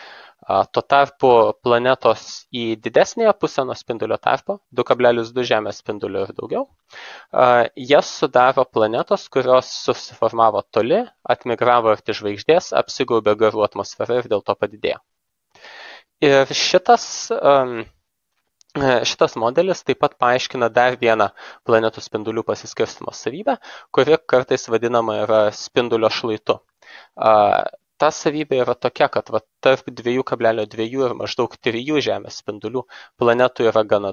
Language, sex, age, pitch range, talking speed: English, male, 20-39, 110-140 Hz, 120 wpm